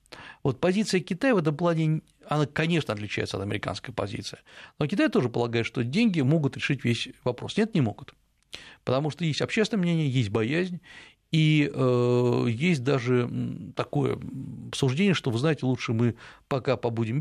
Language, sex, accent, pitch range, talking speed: Russian, male, native, 120-150 Hz, 155 wpm